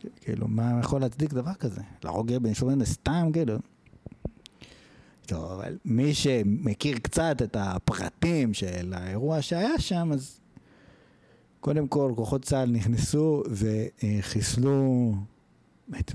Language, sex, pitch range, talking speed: Hebrew, male, 110-140 Hz, 110 wpm